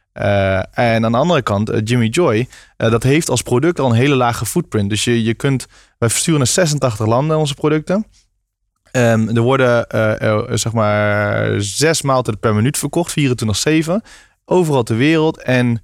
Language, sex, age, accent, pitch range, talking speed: Dutch, male, 20-39, Dutch, 110-140 Hz, 180 wpm